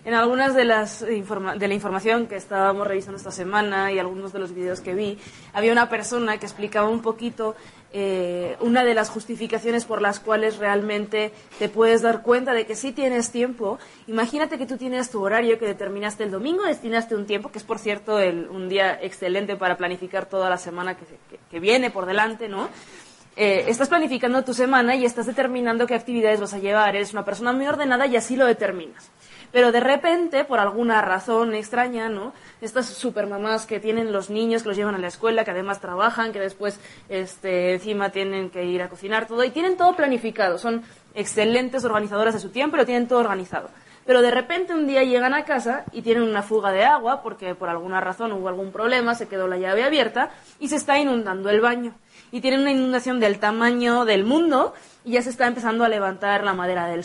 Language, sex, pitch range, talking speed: Spanish, female, 200-245 Hz, 210 wpm